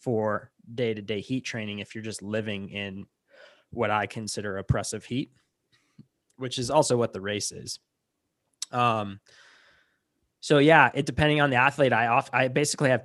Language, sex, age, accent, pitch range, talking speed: English, male, 20-39, American, 105-125 Hz, 155 wpm